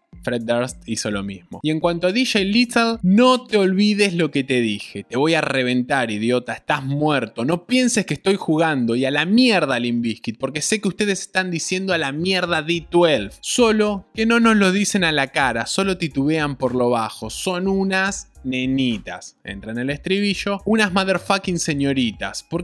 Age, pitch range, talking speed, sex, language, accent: 20-39, 125-195 Hz, 185 wpm, male, Spanish, Argentinian